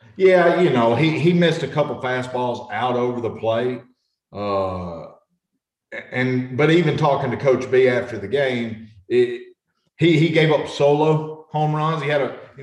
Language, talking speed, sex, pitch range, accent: English, 170 wpm, male, 120-160 Hz, American